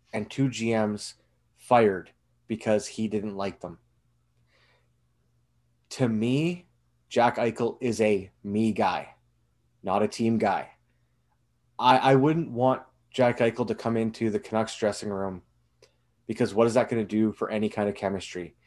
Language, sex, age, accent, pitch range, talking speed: English, male, 20-39, American, 95-120 Hz, 150 wpm